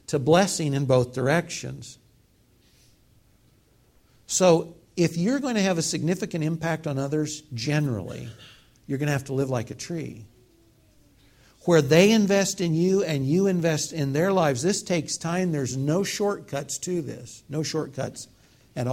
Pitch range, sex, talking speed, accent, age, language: 130-170 Hz, male, 150 wpm, American, 60-79, English